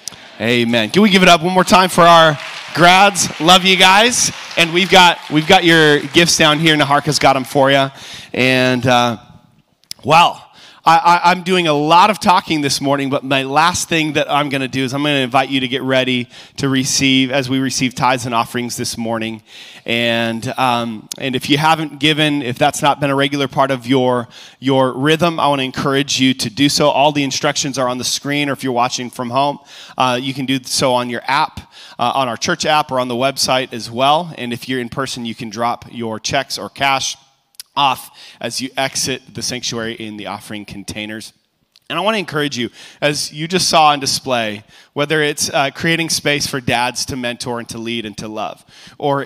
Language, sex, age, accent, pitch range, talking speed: English, male, 30-49, American, 125-150 Hz, 215 wpm